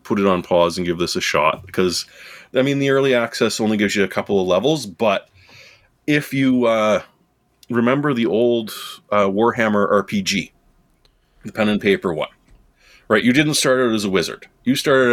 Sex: male